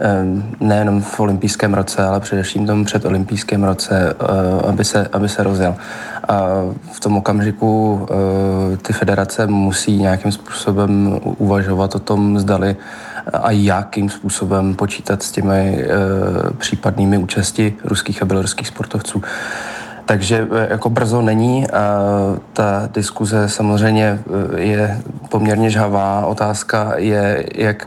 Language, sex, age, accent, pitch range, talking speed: Czech, male, 20-39, native, 100-110 Hz, 115 wpm